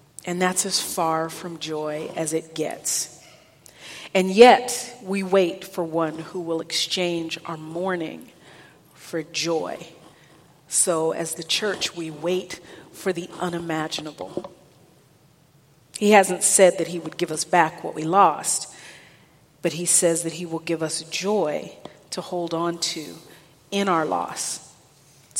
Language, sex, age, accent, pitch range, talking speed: English, female, 40-59, American, 160-190 Hz, 140 wpm